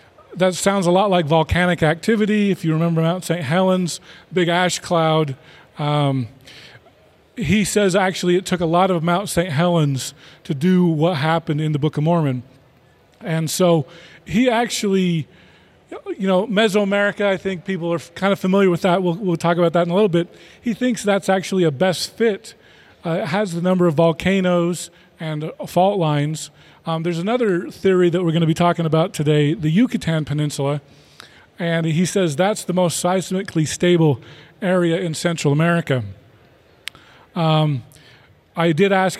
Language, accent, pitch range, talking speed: English, American, 155-185 Hz, 170 wpm